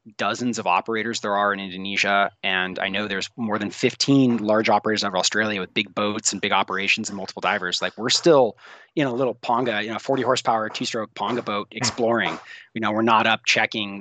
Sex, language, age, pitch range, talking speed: male, English, 20-39, 100-125 Hz, 205 wpm